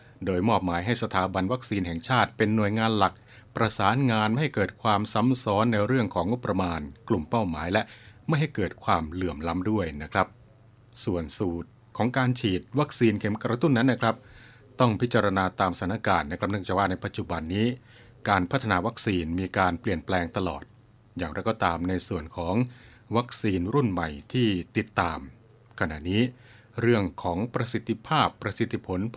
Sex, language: male, Thai